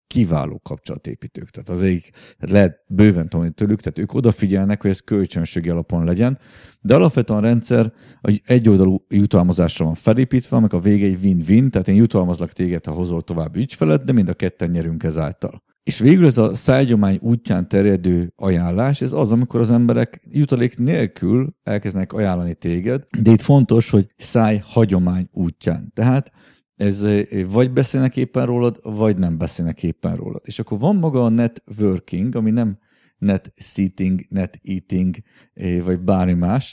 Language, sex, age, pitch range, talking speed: Hungarian, male, 50-69, 90-115 Hz, 155 wpm